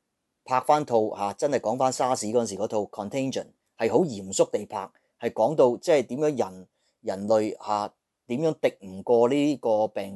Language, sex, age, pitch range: Chinese, male, 30-49, 100-130 Hz